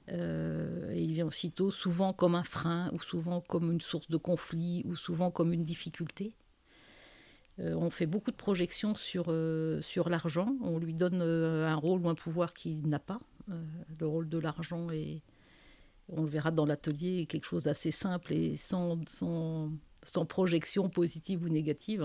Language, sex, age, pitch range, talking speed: French, female, 50-69, 165-195 Hz, 180 wpm